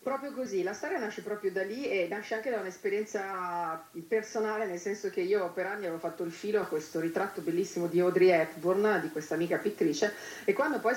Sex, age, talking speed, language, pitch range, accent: female, 40-59, 210 wpm, Italian, 160-195 Hz, native